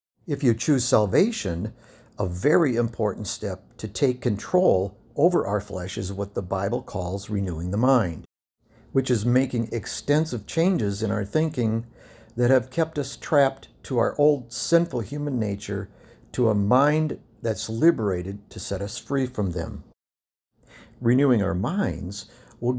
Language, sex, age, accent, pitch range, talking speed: English, male, 60-79, American, 100-130 Hz, 145 wpm